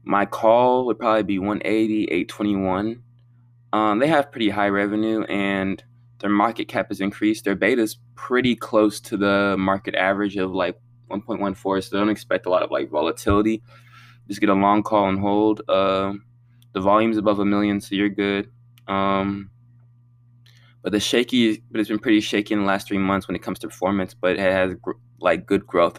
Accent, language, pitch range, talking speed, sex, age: American, English, 95-120 Hz, 185 wpm, male, 20-39